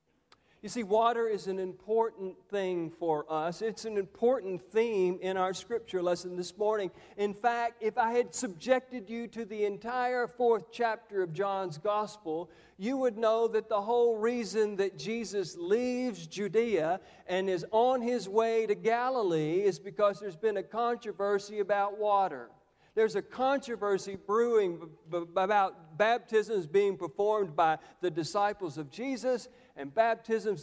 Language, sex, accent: English, male, American